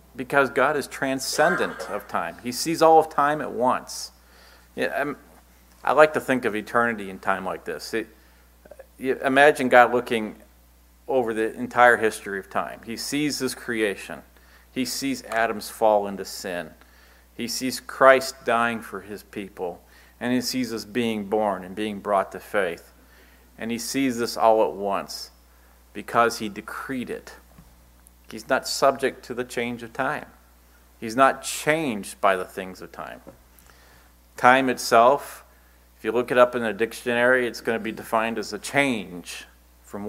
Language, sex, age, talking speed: English, male, 40-59, 160 wpm